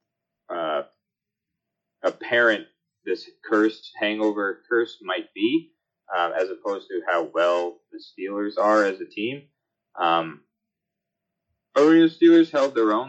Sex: male